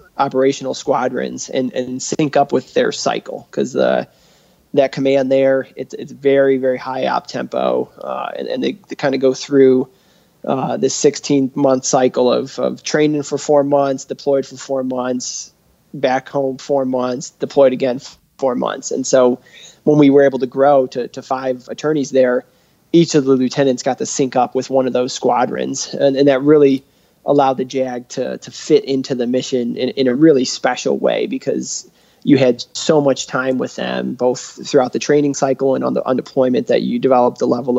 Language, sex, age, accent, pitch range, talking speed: English, male, 20-39, American, 125-140 Hz, 190 wpm